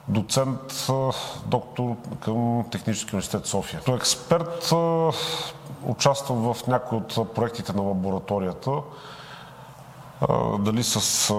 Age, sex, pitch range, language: 40-59, male, 105-130 Hz, Bulgarian